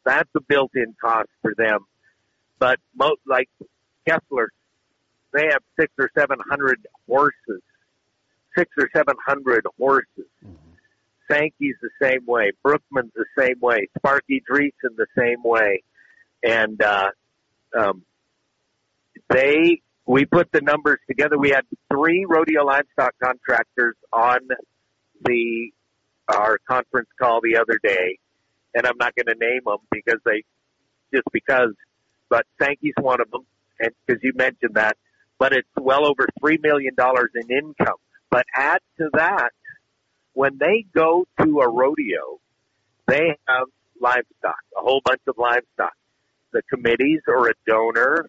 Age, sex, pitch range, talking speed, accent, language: 50-69, male, 125-170 Hz, 140 wpm, American, English